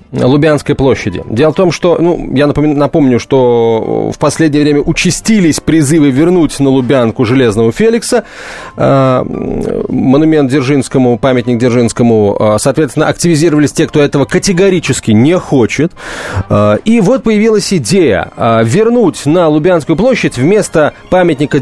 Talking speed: 130 wpm